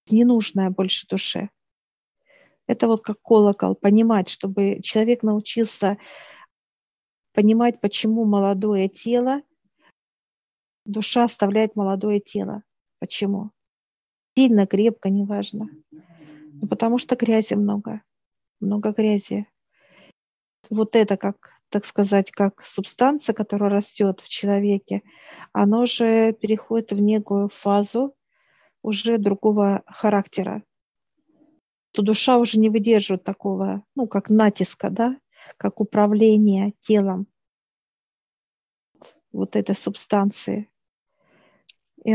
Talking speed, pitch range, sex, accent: 95 wpm, 200-220 Hz, female, native